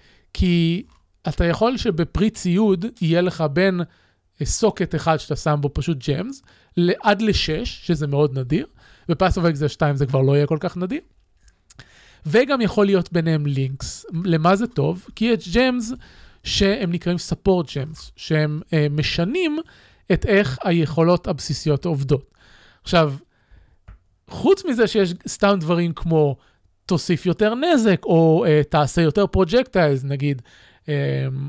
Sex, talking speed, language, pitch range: male, 130 wpm, Hebrew, 150-205 Hz